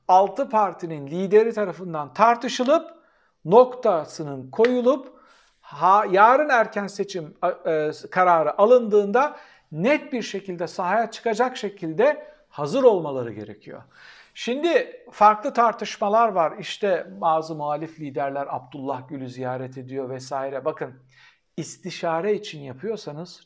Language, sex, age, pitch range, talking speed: Turkish, male, 60-79, 155-230 Hz, 105 wpm